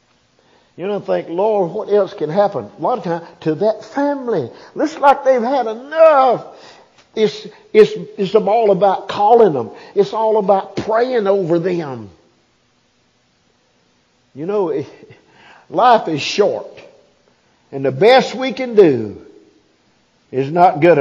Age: 50-69